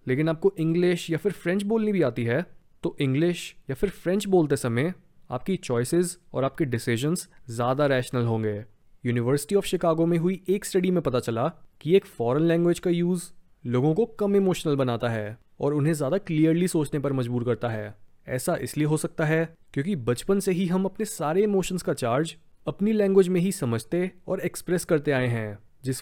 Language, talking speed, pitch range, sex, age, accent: Hindi, 190 wpm, 125-180 Hz, male, 20-39, native